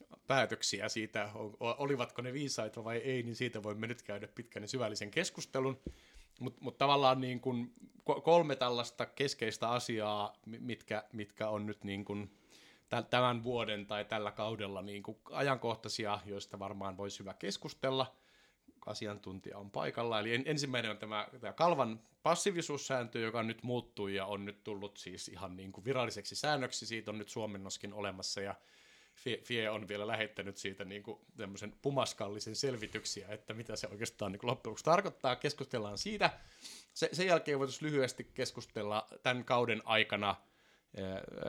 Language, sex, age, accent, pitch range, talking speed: Finnish, male, 30-49, native, 105-125 Hz, 140 wpm